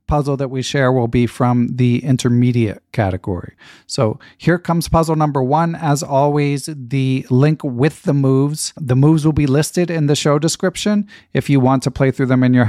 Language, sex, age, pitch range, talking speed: English, male, 40-59, 120-145 Hz, 195 wpm